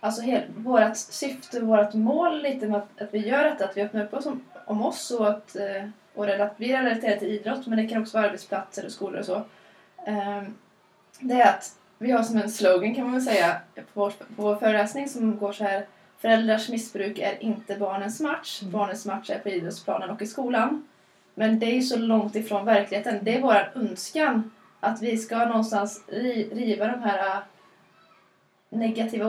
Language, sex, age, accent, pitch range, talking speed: Swedish, female, 20-39, native, 205-240 Hz, 195 wpm